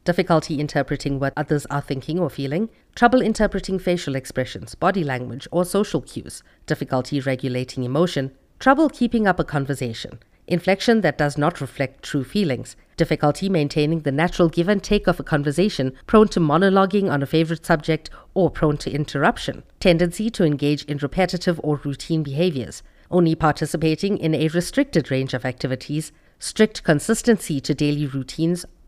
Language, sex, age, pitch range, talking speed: English, female, 50-69, 140-180 Hz, 155 wpm